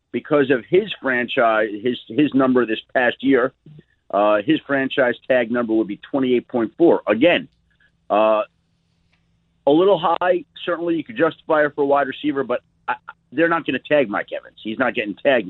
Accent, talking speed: American, 185 wpm